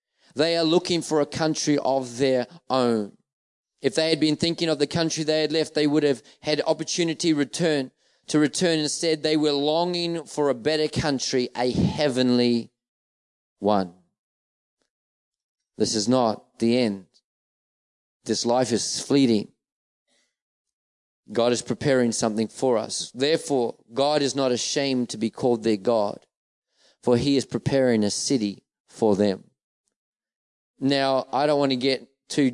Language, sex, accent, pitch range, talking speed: English, male, Australian, 125-150 Hz, 145 wpm